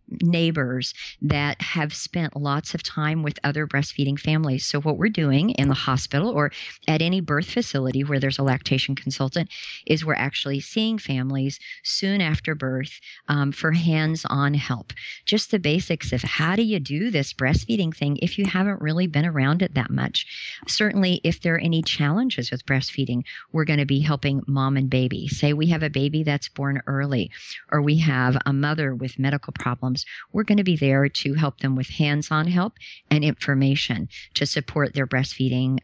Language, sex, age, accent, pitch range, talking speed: English, male, 50-69, American, 135-165 Hz, 185 wpm